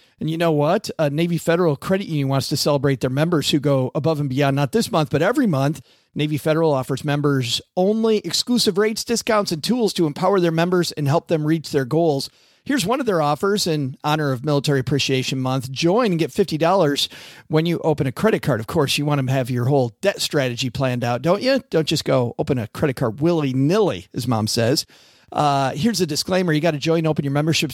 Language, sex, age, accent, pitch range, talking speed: English, male, 40-59, American, 140-175 Hz, 225 wpm